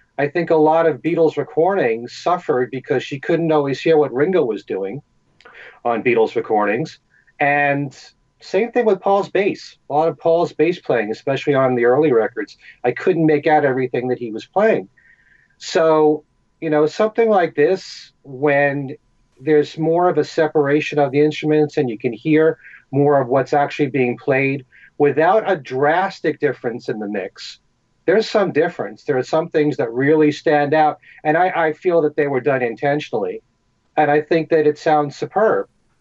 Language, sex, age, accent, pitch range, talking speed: English, male, 40-59, American, 140-160 Hz, 175 wpm